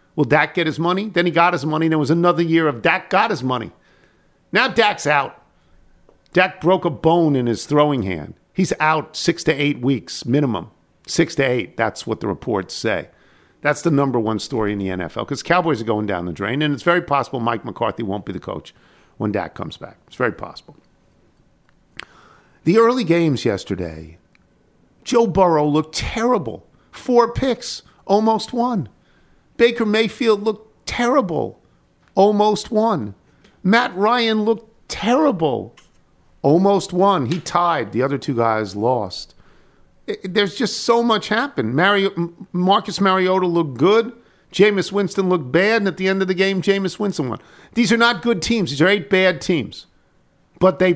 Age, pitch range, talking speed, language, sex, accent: 50-69, 140-205 Hz, 170 wpm, English, male, American